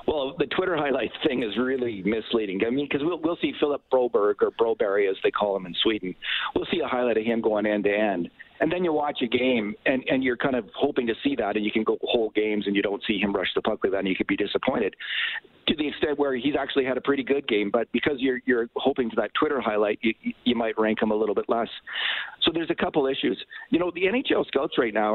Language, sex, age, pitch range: English, male, 50-69, 110-140 Hz